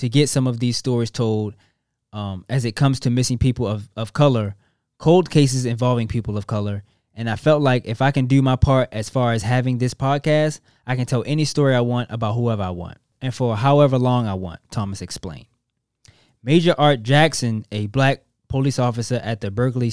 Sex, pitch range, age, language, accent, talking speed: male, 115-135 Hz, 20-39, English, American, 205 wpm